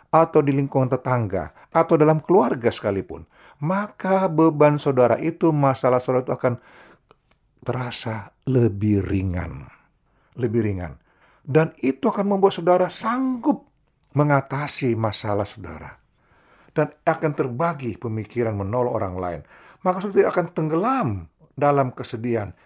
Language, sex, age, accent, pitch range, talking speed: Indonesian, male, 50-69, native, 110-160 Hz, 115 wpm